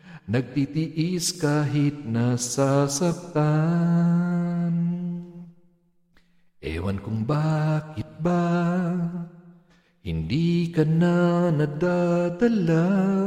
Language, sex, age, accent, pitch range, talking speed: Filipino, male, 50-69, native, 155-200 Hz, 55 wpm